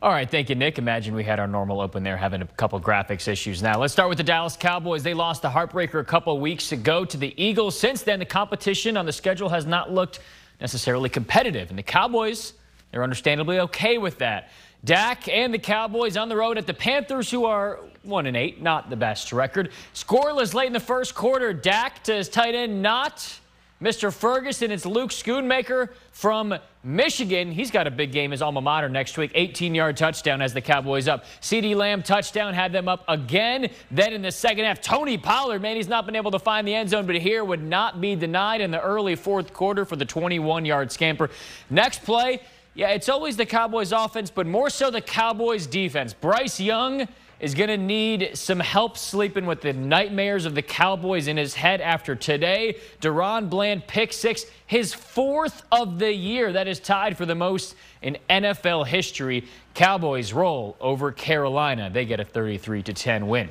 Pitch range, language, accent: 150-220 Hz, English, American